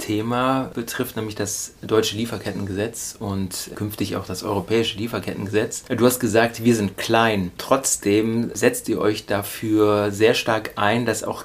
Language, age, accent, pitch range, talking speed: German, 30-49, German, 105-115 Hz, 145 wpm